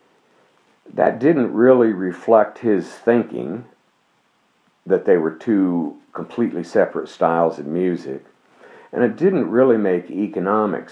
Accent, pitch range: American, 85-105 Hz